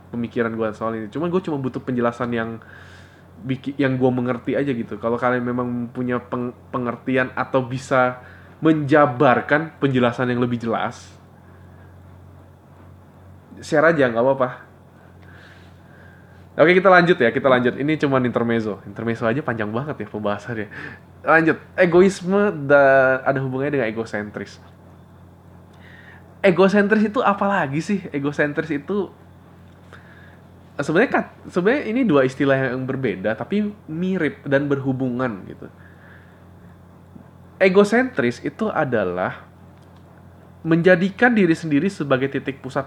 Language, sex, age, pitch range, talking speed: Indonesian, male, 20-39, 100-155 Hz, 115 wpm